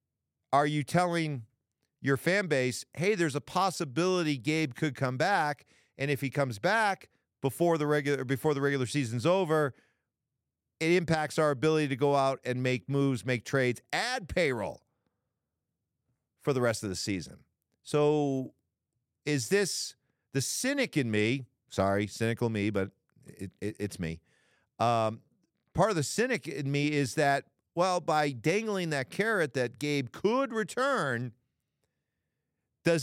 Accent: American